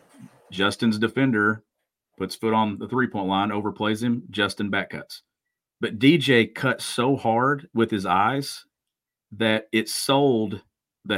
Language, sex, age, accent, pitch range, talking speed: English, male, 40-59, American, 100-120 Hz, 135 wpm